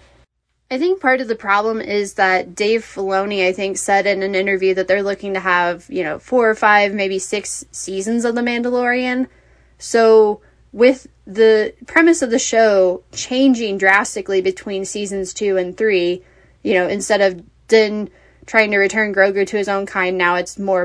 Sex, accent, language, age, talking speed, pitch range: female, American, English, 20-39, 180 wpm, 190-225 Hz